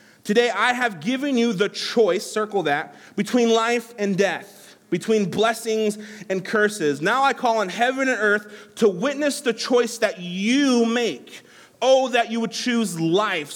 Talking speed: 165 wpm